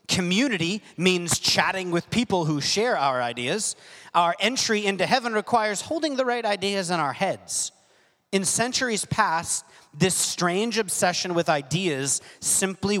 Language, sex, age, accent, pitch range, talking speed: English, male, 30-49, American, 130-185 Hz, 140 wpm